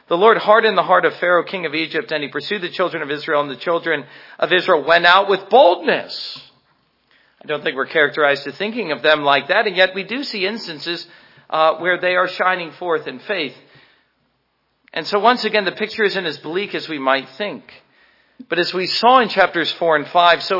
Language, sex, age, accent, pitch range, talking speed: English, male, 40-59, American, 160-200 Hz, 215 wpm